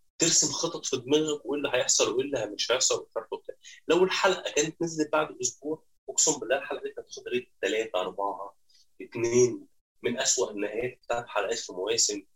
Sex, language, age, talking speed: male, Arabic, 20-39, 175 wpm